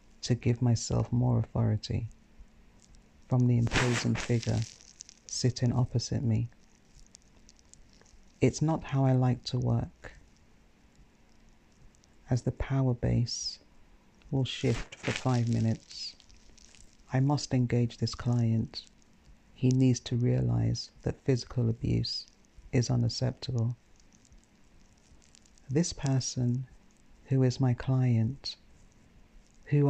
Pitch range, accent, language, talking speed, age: 115-130 Hz, British, English, 100 wpm, 60-79